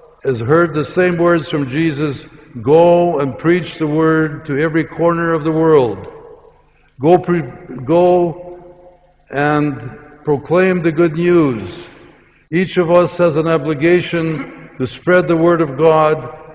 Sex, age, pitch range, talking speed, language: male, 60-79, 140-165 Hz, 140 wpm, Ukrainian